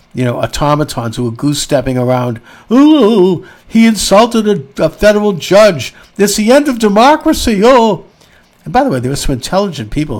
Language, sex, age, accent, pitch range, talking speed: English, male, 60-79, American, 125-165 Hz, 170 wpm